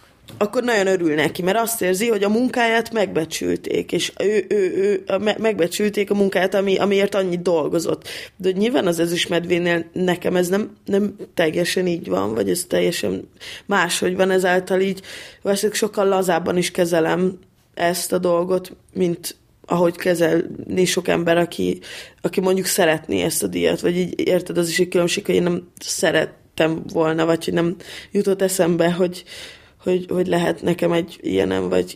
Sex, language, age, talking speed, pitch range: female, Hungarian, 20-39, 170 wpm, 170-190 Hz